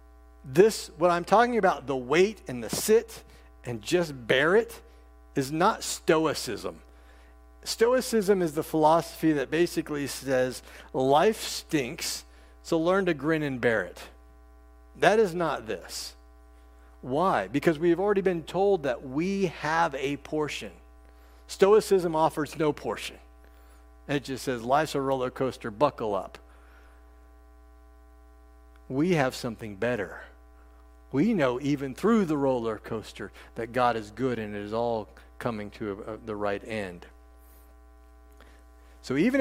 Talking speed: 130 wpm